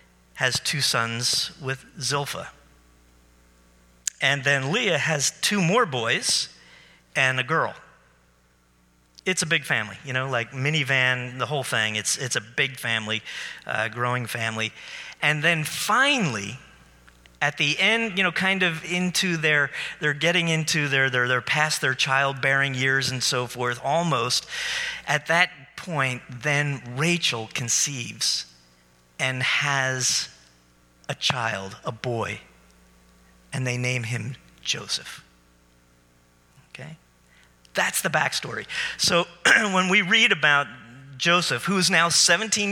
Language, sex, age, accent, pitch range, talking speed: English, male, 40-59, American, 115-170 Hz, 130 wpm